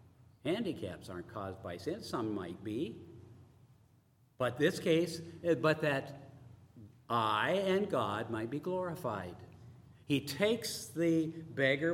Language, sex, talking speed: English, male, 115 wpm